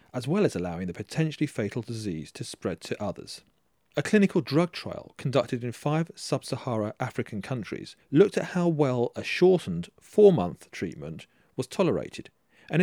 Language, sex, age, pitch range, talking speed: English, male, 40-59, 135-180 Hz, 155 wpm